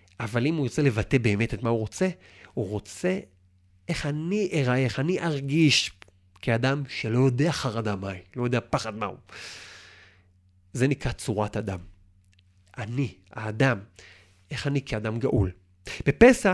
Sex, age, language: male, 30-49, Hebrew